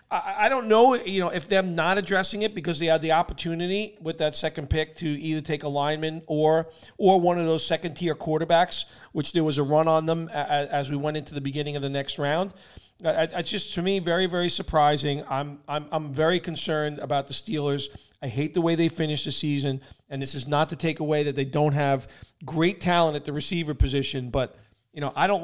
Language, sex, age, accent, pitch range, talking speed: English, male, 40-59, American, 140-165 Hz, 220 wpm